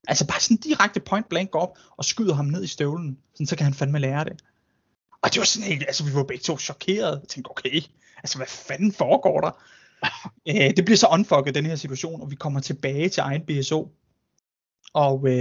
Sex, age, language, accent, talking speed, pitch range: male, 20-39, Danish, native, 205 wpm, 135-170 Hz